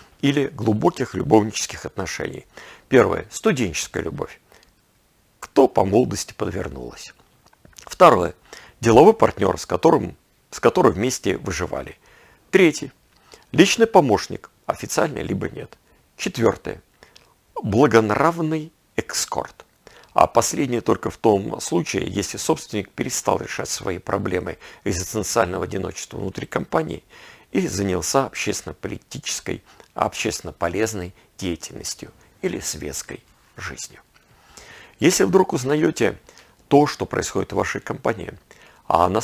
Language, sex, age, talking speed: Russian, male, 50-69, 95 wpm